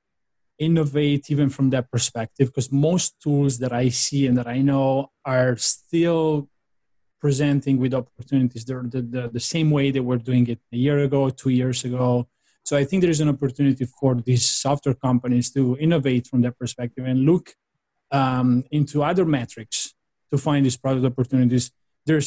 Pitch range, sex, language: 125-150 Hz, male, English